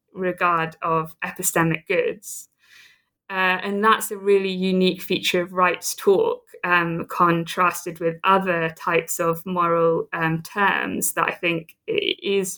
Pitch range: 175-200 Hz